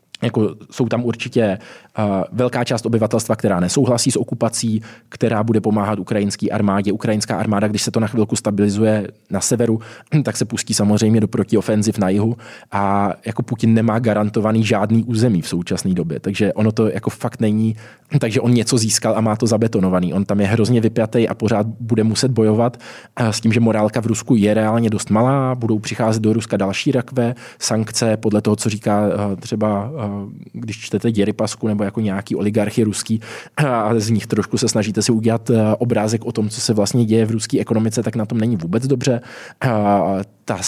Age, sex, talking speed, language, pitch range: 20-39, male, 185 wpm, Czech, 105-115 Hz